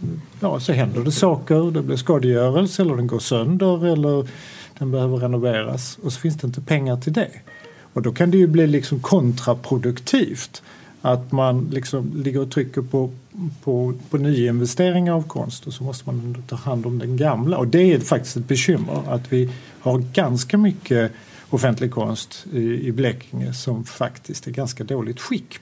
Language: Swedish